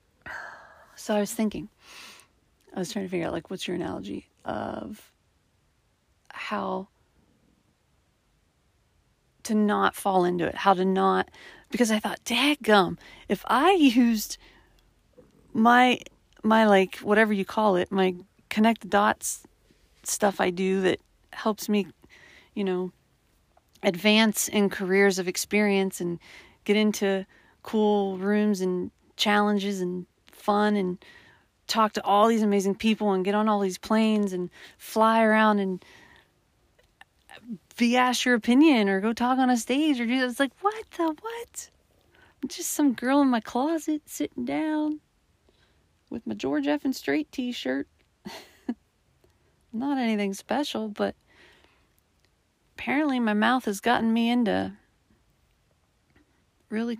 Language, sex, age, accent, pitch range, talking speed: English, female, 40-59, American, 195-245 Hz, 135 wpm